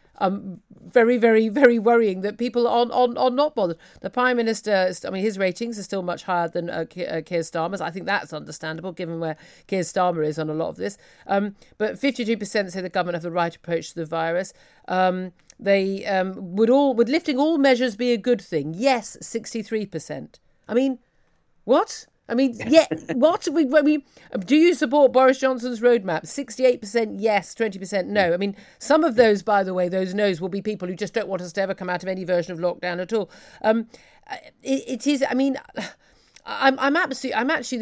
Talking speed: 210 wpm